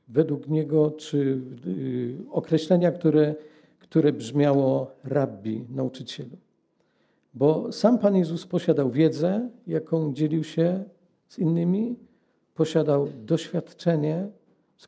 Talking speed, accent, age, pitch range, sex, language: 95 wpm, native, 50-69, 150-180 Hz, male, Polish